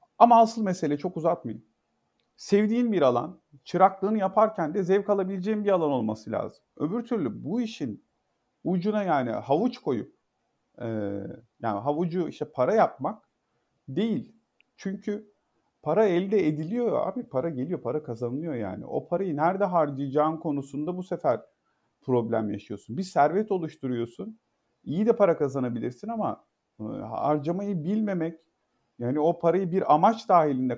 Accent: native